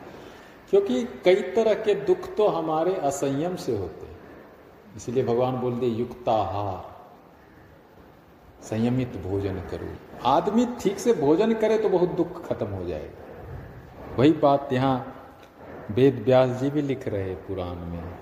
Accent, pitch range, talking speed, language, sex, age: native, 100-135 Hz, 140 wpm, Hindi, male, 40-59